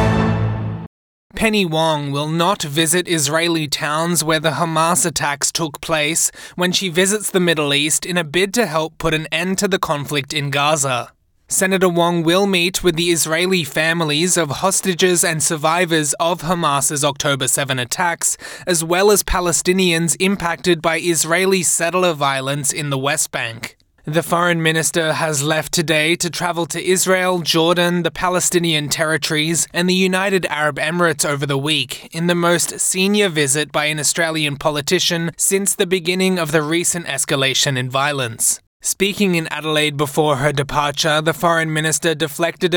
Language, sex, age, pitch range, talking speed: English, male, 20-39, 150-175 Hz, 155 wpm